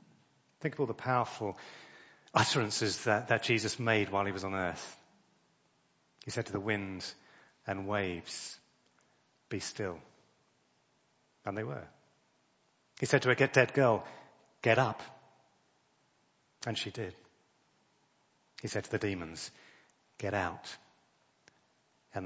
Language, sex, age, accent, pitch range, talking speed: English, male, 30-49, British, 95-115 Hz, 125 wpm